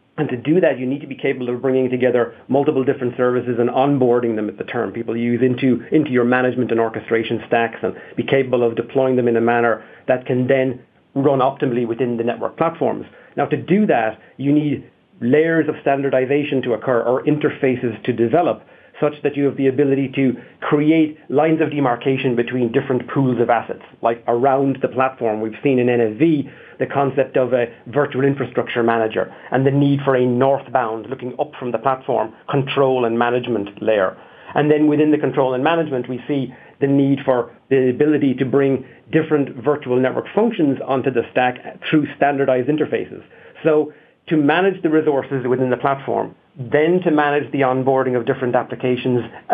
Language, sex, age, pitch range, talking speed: English, male, 40-59, 125-145 Hz, 185 wpm